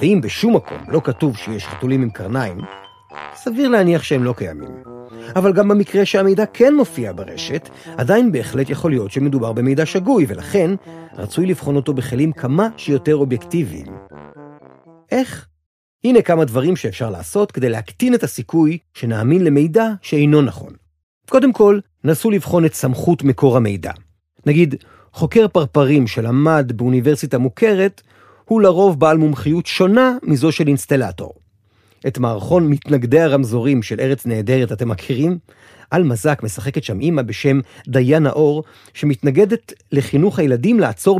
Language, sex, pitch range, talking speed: Hebrew, male, 120-175 Hz, 135 wpm